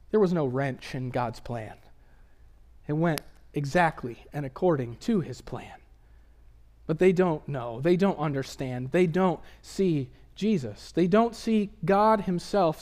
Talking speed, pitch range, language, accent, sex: 145 wpm, 115-185 Hz, English, American, male